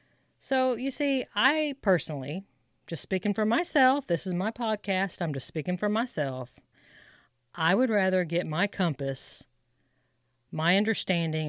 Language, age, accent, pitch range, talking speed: English, 40-59, American, 150-190 Hz, 135 wpm